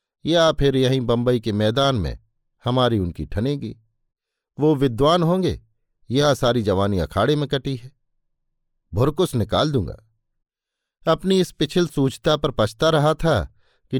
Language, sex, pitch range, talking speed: Hindi, male, 110-145 Hz, 135 wpm